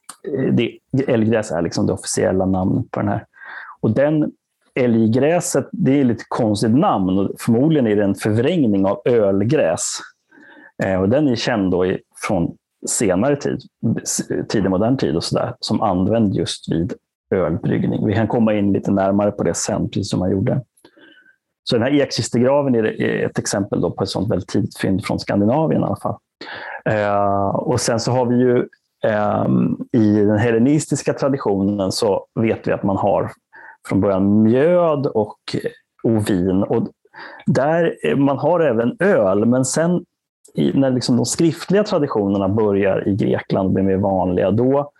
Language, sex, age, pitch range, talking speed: Swedish, male, 30-49, 100-140 Hz, 155 wpm